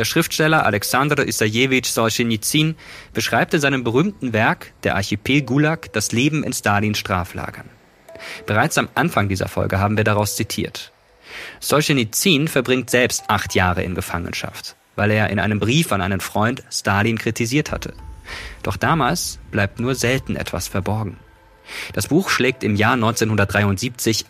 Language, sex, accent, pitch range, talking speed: German, male, German, 100-125 Hz, 145 wpm